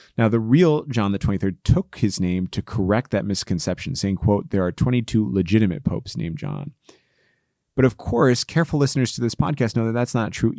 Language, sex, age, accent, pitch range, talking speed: English, male, 30-49, American, 95-125 Hz, 200 wpm